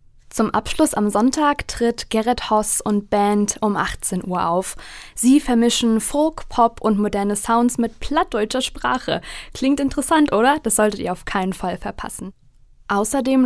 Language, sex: German, female